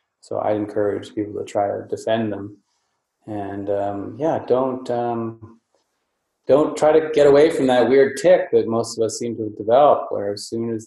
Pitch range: 105-135 Hz